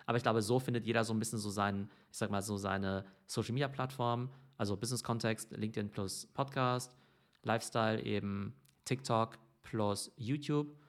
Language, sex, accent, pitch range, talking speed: German, male, German, 105-125 Hz, 150 wpm